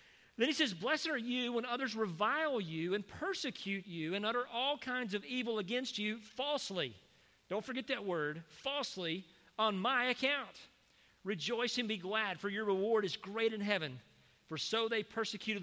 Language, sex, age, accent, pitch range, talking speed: English, male, 40-59, American, 190-245 Hz, 175 wpm